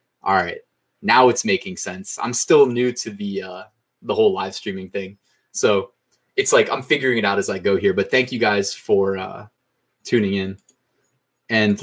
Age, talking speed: 20-39, 190 wpm